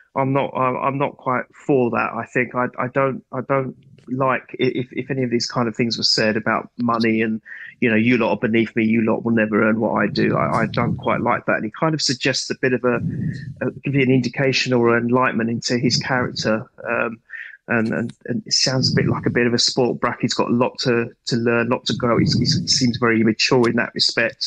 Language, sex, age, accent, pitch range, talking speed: English, male, 30-49, British, 115-130 Hz, 255 wpm